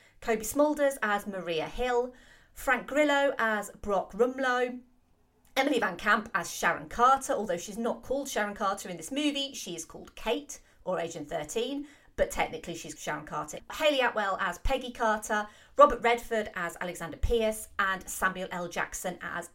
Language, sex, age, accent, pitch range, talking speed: English, female, 30-49, British, 185-260 Hz, 160 wpm